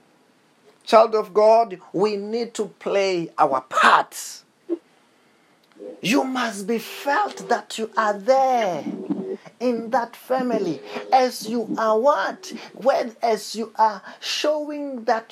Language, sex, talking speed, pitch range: English, male, 115 wpm, 165-230 Hz